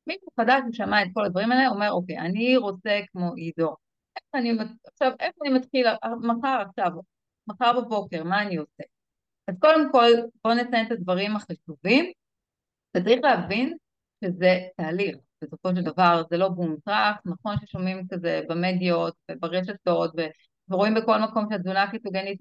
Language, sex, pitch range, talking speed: Hebrew, female, 175-230 Hz, 140 wpm